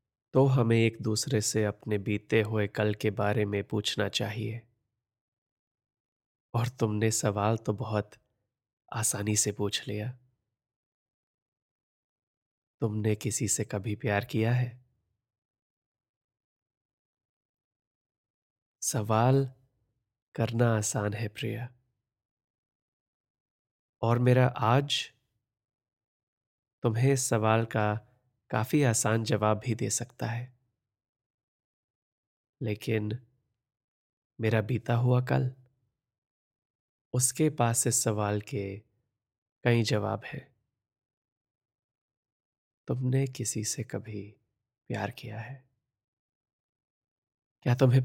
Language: Hindi